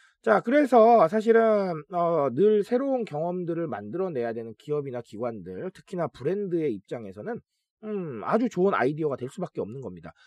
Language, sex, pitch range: Korean, male, 130-215 Hz